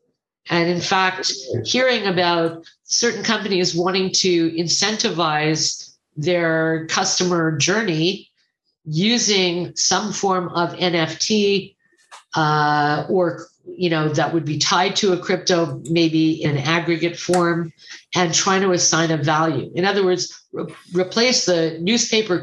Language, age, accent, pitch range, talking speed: English, 50-69, American, 160-185 Hz, 125 wpm